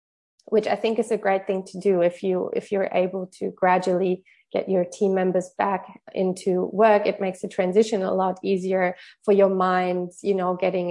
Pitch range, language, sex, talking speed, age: 185-220 Hz, English, female, 200 wpm, 20-39